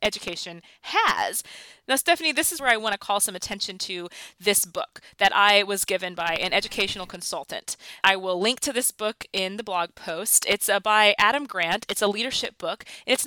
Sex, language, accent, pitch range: female, English, American, 180-230 Hz